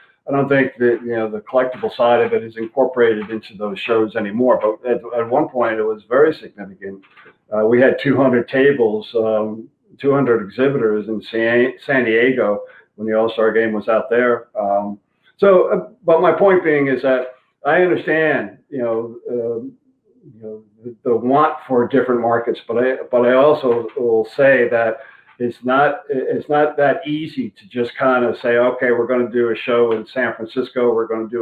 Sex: male